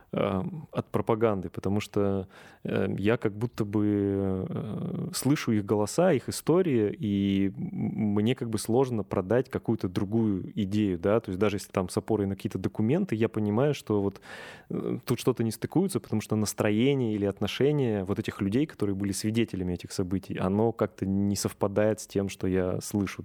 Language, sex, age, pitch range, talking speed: Russian, male, 20-39, 95-115 Hz, 165 wpm